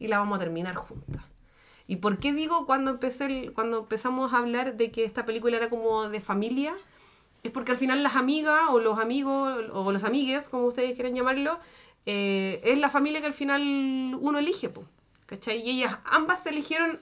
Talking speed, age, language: 200 wpm, 30-49, Spanish